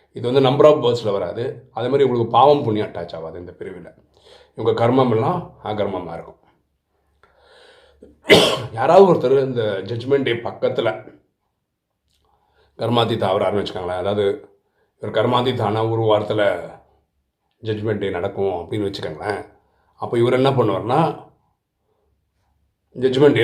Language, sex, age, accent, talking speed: Tamil, male, 30-49, native, 110 wpm